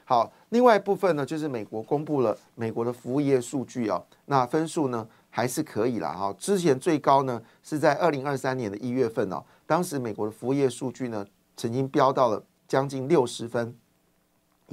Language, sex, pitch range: Chinese, male, 115-155 Hz